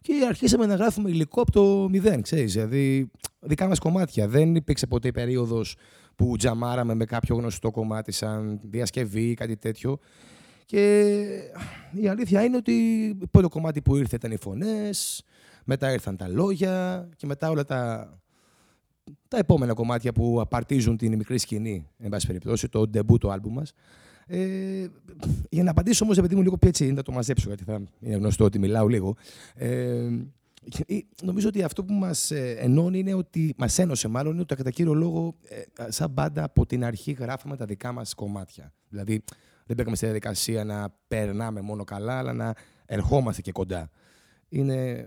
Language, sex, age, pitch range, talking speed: Greek, male, 20-39, 110-165 Hz, 170 wpm